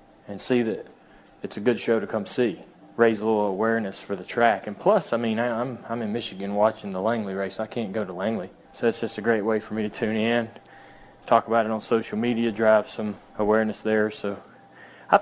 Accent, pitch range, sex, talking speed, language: American, 100-115 Hz, male, 225 wpm, English